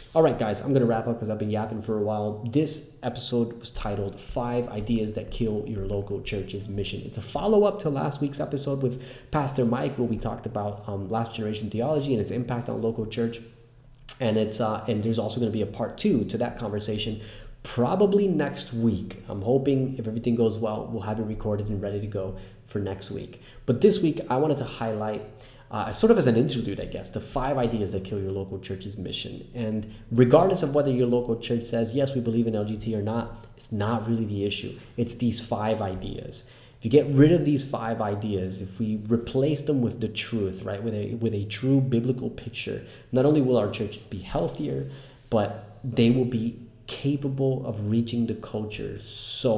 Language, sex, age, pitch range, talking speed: English, male, 20-39, 105-125 Hz, 210 wpm